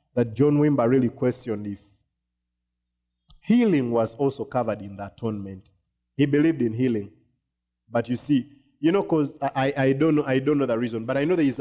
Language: English